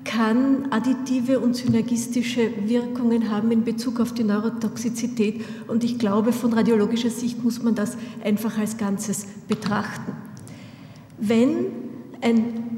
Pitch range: 220-245 Hz